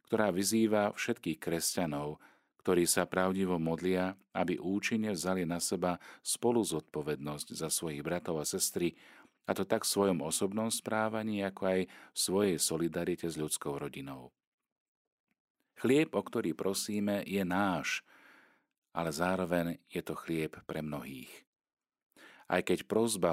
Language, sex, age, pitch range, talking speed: Slovak, male, 40-59, 80-100 Hz, 130 wpm